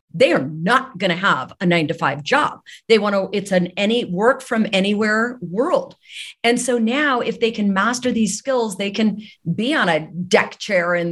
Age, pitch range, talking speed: 50-69, 180-230 Hz, 205 wpm